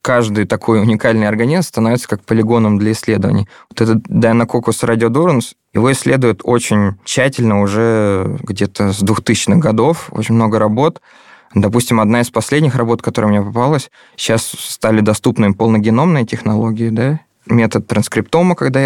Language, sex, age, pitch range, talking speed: Russian, male, 20-39, 110-125 Hz, 135 wpm